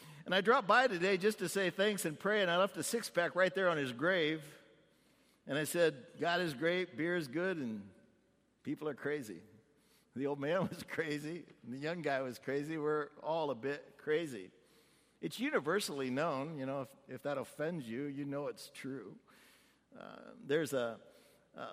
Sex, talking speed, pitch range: male, 185 wpm, 140-175 Hz